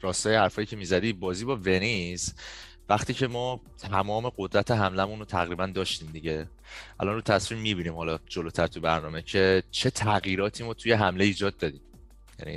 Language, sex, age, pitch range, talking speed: Persian, male, 30-49, 95-135 Hz, 165 wpm